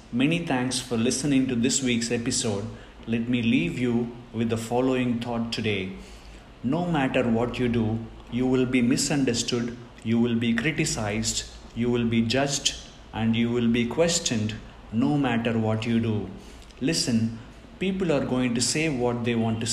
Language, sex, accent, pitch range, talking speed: English, male, Indian, 115-135 Hz, 165 wpm